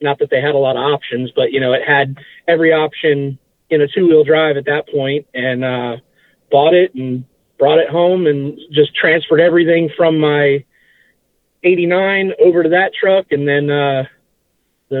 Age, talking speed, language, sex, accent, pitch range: 30-49, 185 wpm, English, male, American, 140-170 Hz